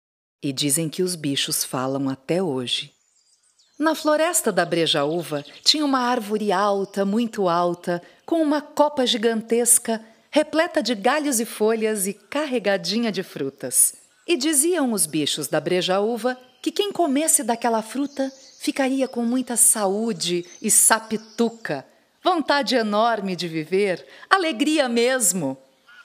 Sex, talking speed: female, 125 wpm